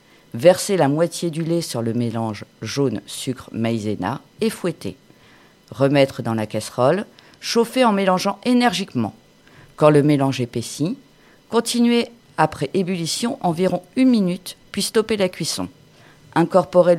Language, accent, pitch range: French, French, 135-195 Hz